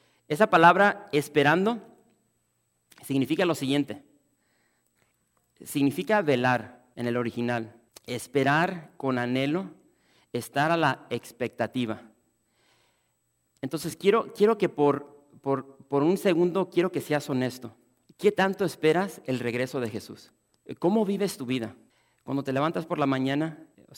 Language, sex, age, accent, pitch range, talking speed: English, male, 40-59, Mexican, 125-160 Hz, 125 wpm